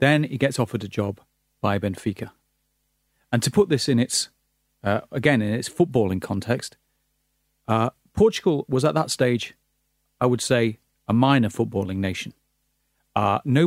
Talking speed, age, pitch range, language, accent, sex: 155 wpm, 40-59, 110-135 Hz, English, British, male